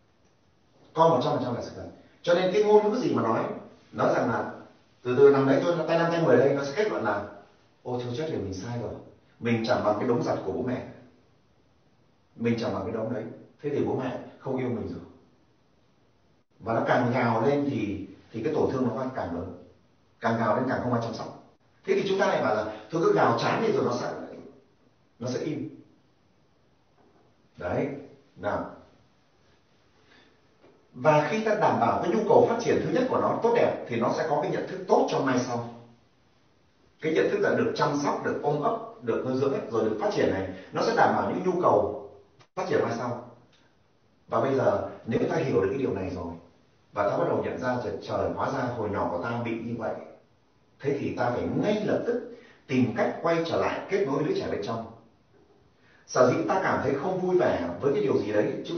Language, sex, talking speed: Vietnamese, male, 225 wpm